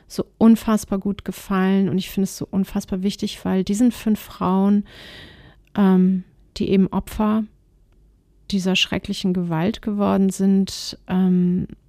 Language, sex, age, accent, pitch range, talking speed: German, female, 40-59, German, 185-210 Hz, 125 wpm